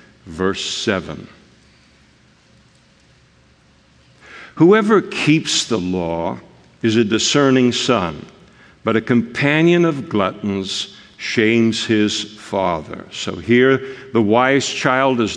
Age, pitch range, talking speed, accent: 60-79, 115-135 Hz, 95 wpm, American